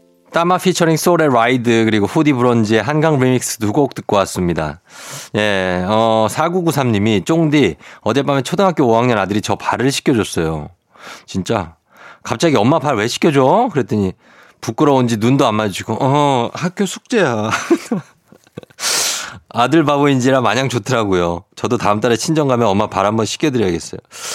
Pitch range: 105-150 Hz